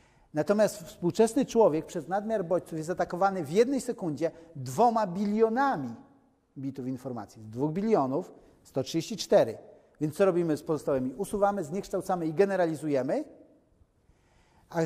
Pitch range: 150-215 Hz